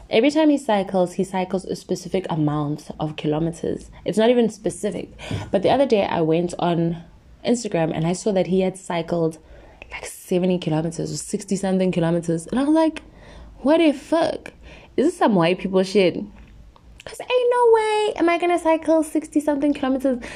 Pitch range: 170-255 Hz